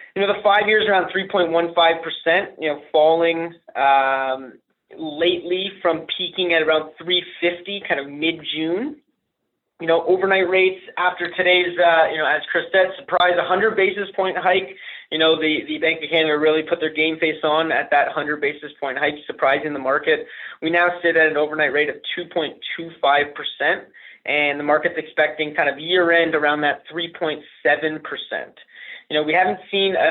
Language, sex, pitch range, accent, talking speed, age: English, male, 155-185 Hz, American, 165 wpm, 20-39